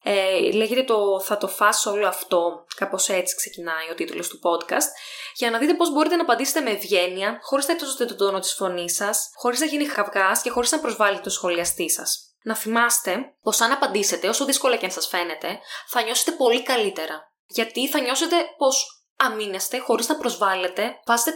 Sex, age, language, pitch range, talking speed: female, 10-29, Greek, 205-310 Hz, 185 wpm